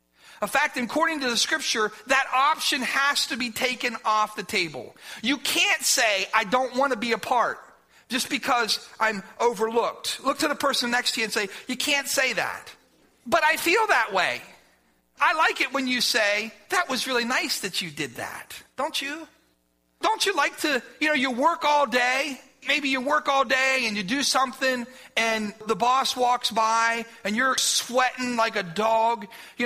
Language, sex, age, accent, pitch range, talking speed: English, male, 40-59, American, 225-280 Hz, 190 wpm